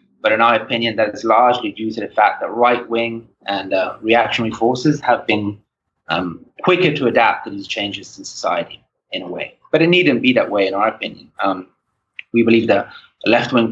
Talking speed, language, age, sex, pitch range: 195 wpm, English, 30-49, male, 110-130 Hz